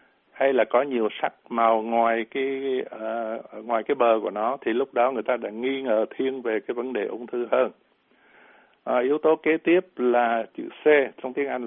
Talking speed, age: 210 wpm, 60-79